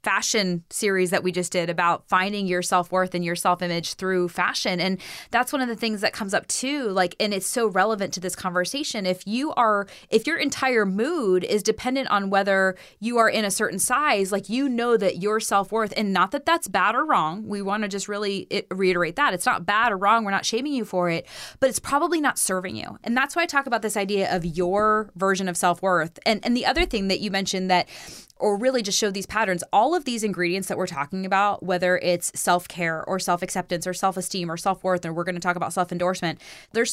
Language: English